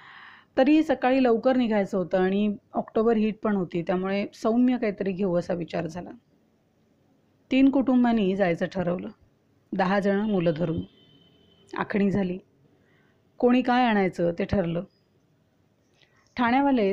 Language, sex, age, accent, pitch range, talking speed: Marathi, female, 30-49, native, 180-235 Hz, 115 wpm